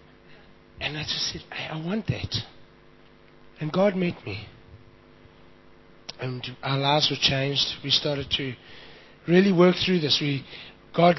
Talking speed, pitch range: 140 wpm, 115-150 Hz